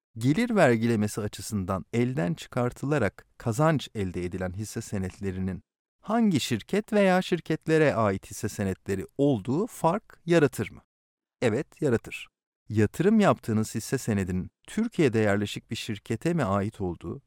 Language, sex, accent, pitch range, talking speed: Turkish, male, native, 100-150 Hz, 120 wpm